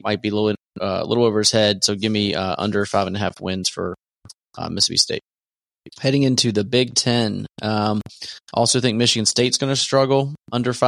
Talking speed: 200 wpm